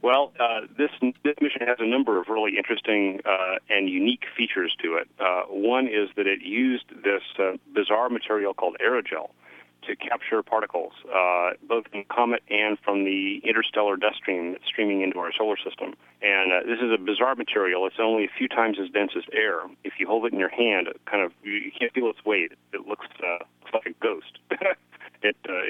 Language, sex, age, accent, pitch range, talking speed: English, male, 40-59, American, 95-120 Hz, 200 wpm